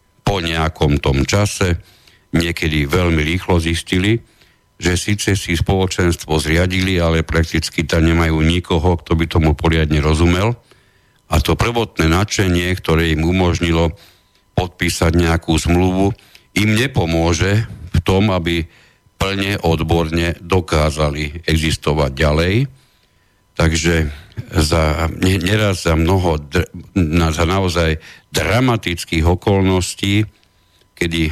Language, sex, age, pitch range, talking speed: Slovak, male, 60-79, 80-100 Hz, 110 wpm